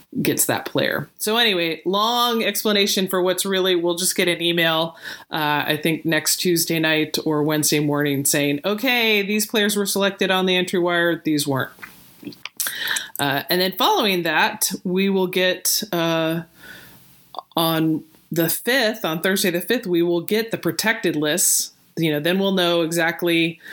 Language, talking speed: English, 160 wpm